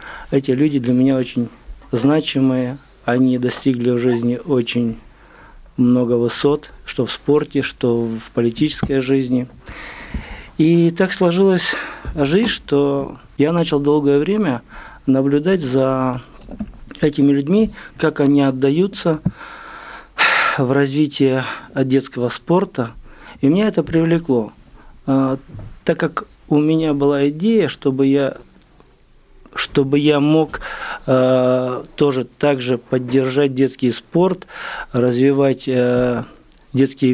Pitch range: 125-150 Hz